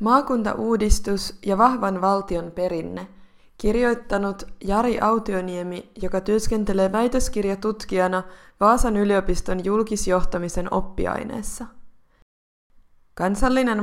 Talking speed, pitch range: 70 wpm, 185-215 Hz